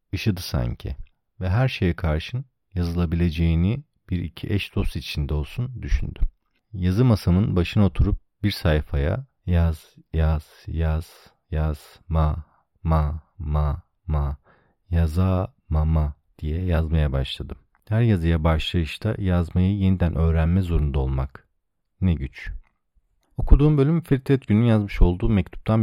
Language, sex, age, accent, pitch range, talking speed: Turkish, male, 40-59, native, 80-105 Hz, 120 wpm